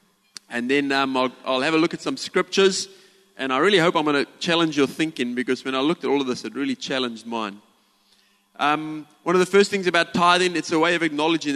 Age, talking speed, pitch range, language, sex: 30-49, 240 wpm, 125-180 Hz, English, male